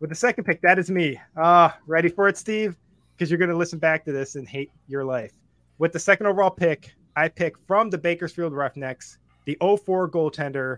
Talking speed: 210 wpm